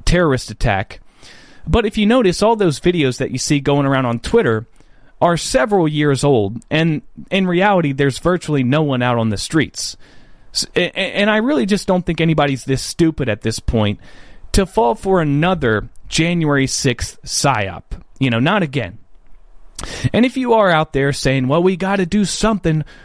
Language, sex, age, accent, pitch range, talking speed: English, male, 30-49, American, 130-195 Hz, 170 wpm